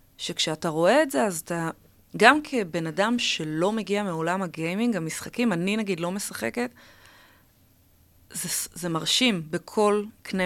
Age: 20-39